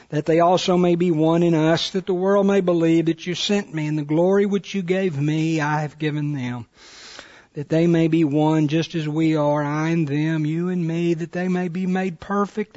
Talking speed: 230 wpm